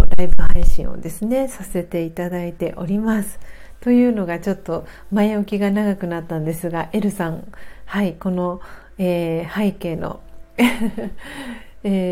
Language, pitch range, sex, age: Japanese, 190-240 Hz, female, 40-59